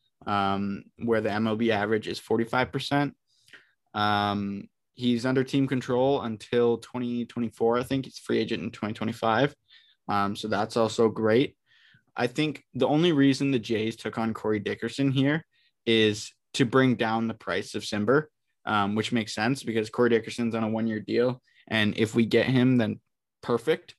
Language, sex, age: English, male, 20-39